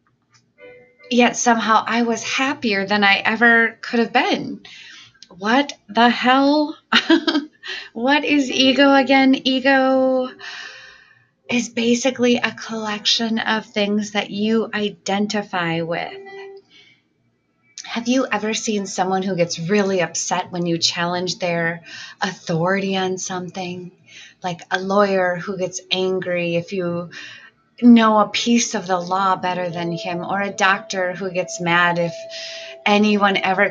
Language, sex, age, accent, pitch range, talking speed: English, female, 30-49, American, 180-235 Hz, 125 wpm